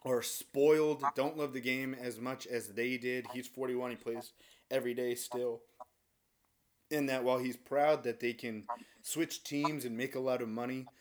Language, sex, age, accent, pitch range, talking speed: English, male, 30-49, American, 105-130 Hz, 180 wpm